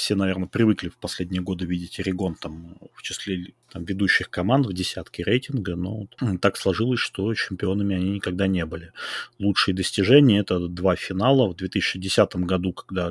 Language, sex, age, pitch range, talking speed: Russian, male, 30-49, 90-105 Hz, 165 wpm